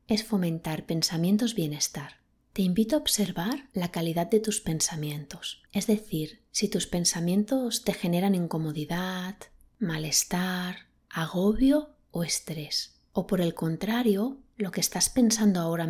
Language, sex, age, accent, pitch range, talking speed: Spanish, female, 30-49, Spanish, 170-210 Hz, 125 wpm